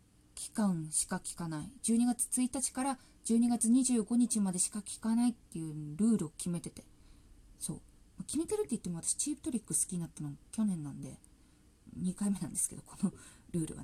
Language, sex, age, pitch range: Japanese, female, 20-39, 175-245 Hz